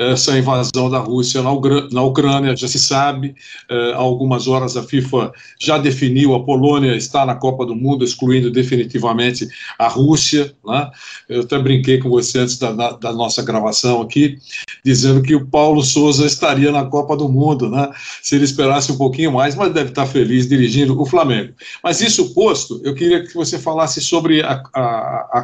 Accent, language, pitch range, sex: Brazilian, Portuguese, 125-145 Hz, male